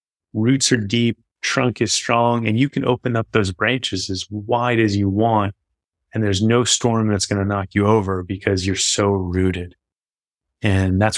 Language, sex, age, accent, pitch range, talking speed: English, male, 30-49, American, 95-115 Hz, 185 wpm